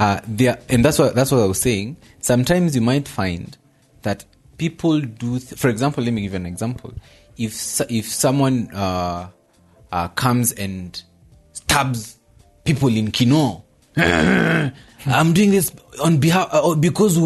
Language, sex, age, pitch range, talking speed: English, male, 30-49, 105-155 Hz, 155 wpm